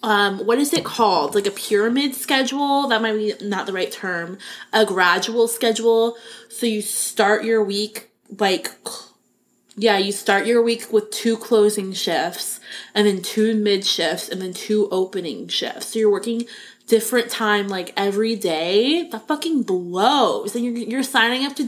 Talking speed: 170 wpm